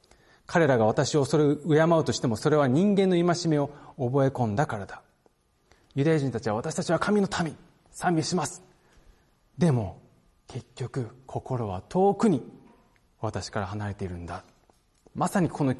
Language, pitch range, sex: Japanese, 105-180 Hz, male